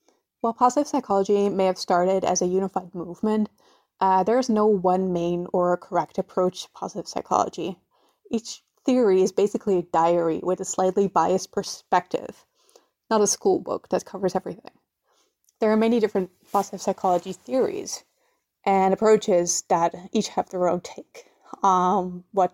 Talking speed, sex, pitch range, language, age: 150 wpm, female, 180-215 Hz, English, 20-39